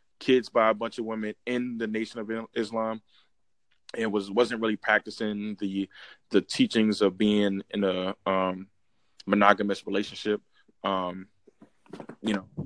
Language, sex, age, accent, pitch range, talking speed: English, male, 20-39, American, 100-120 Hz, 140 wpm